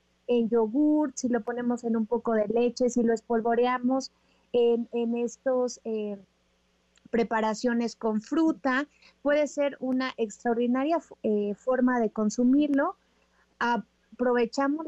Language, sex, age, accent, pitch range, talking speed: Spanish, female, 30-49, Mexican, 230-270 Hz, 115 wpm